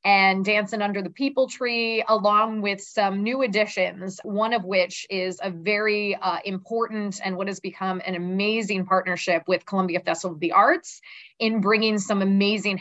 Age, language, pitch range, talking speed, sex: 20-39, English, 185-215 Hz, 170 wpm, female